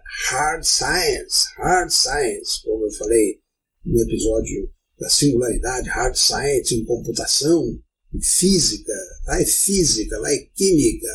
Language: Portuguese